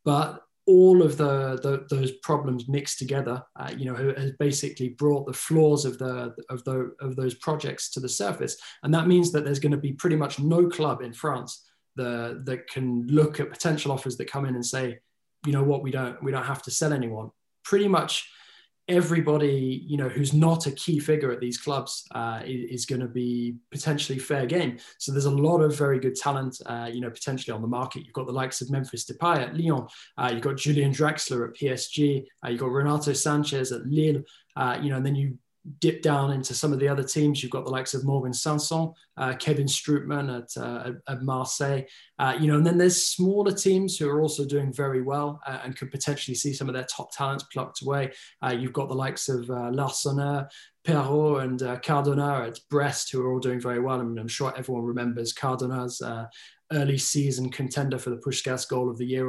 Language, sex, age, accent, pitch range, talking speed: English, male, 20-39, British, 125-145 Hz, 220 wpm